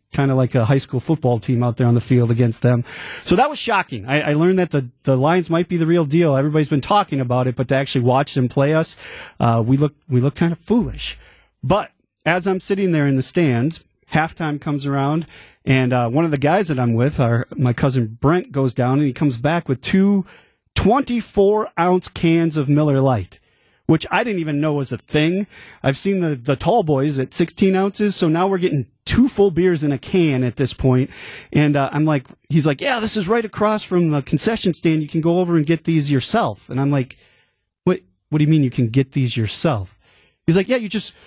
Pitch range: 130-175 Hz